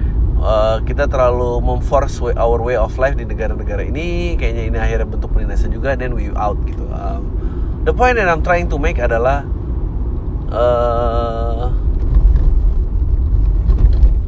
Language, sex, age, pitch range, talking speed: Indonesian, male, 20-39, 70-115 Hz, 140 wpm